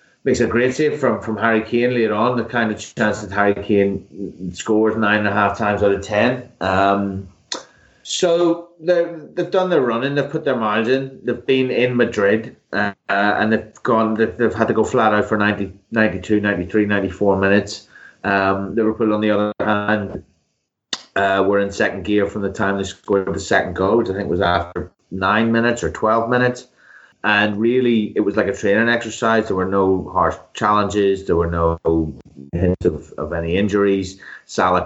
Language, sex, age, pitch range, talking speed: English, male, 30-49, 95-115 Hz, 185 wpm